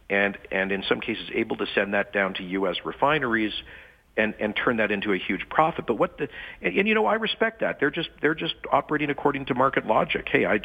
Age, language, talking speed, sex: 50-69, English, 235 wpm, male